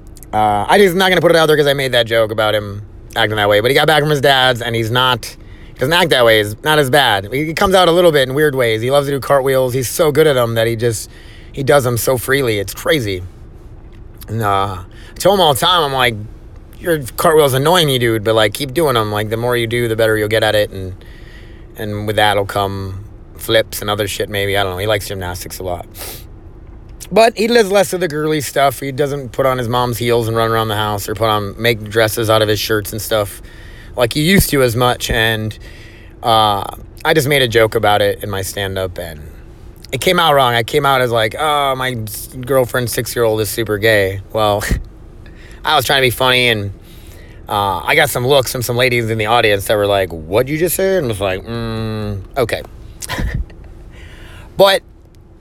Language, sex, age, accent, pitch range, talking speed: English, male, 30-49, American, 105-130 Hz, 235 wpm